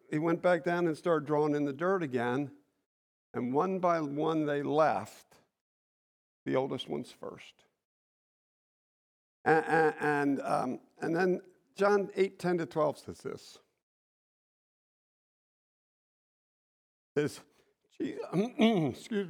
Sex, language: male, English